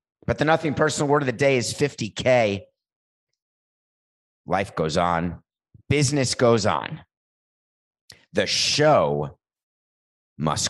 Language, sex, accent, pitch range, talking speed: English, male, American, 80-105 Hz, 105 wpm